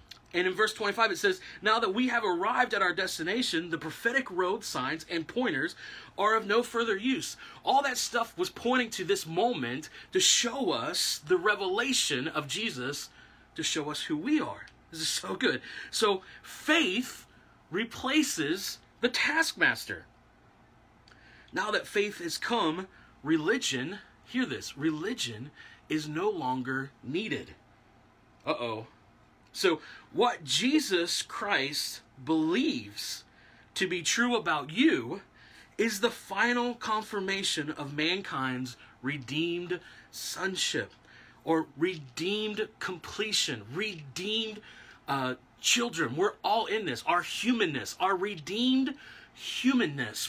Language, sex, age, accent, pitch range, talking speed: English, male, 30-49, American, 155-250 Hz, 125 wpm